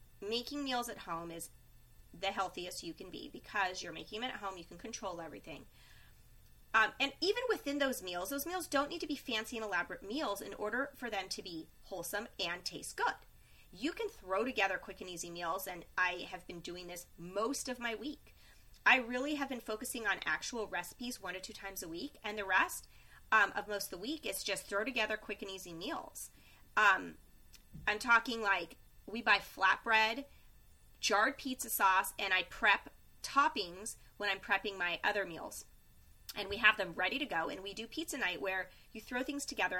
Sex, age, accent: female, 30-49, American